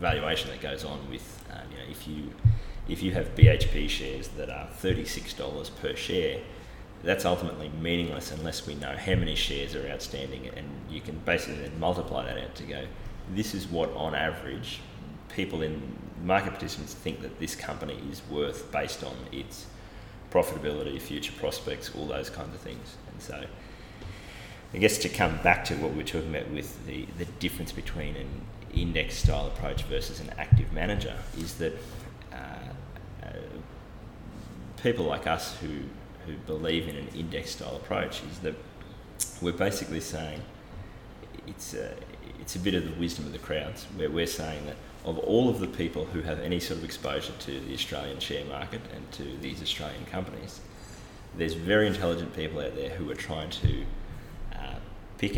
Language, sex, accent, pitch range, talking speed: English, male, Australian, 75-95 Hz, 175 wpm